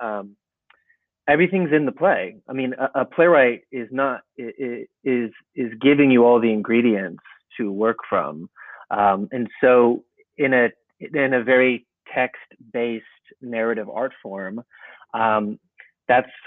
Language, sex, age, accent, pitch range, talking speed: English, male, 30-49, American, 120-150 Hz, 140 wpm